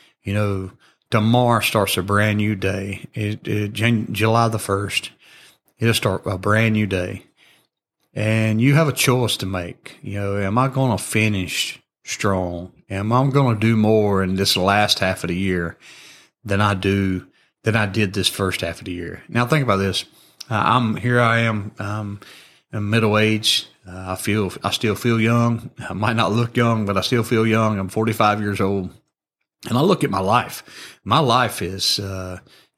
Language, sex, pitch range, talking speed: English, male, 100-120 Hz, 190 wpm